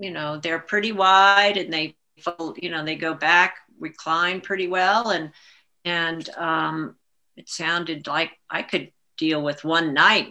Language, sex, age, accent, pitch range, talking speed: English, female, 50-69, American, 155-190 Hz, 155 wpm